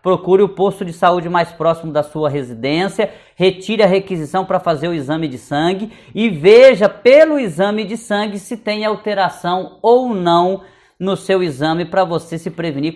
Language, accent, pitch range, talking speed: Portuguese, Brazilian, 170-215 Hz, 170 wpm